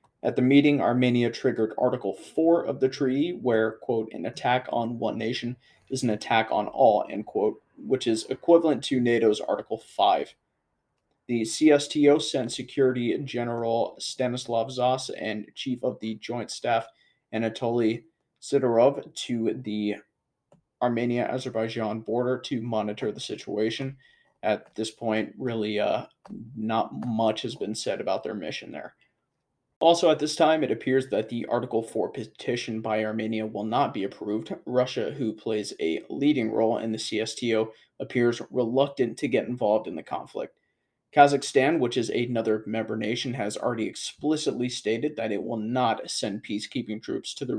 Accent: American